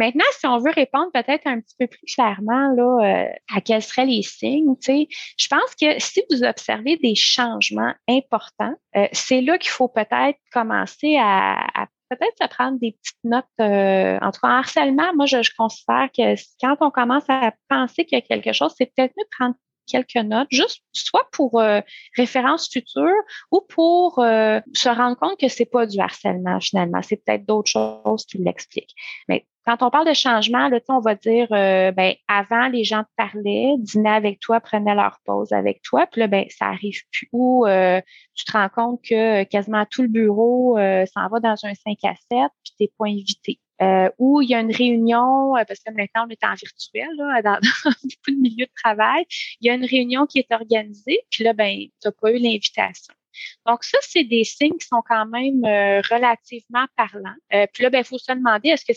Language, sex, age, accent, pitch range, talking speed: French, female, 30-49, Canadian, 215-265 Hz, 210 wpm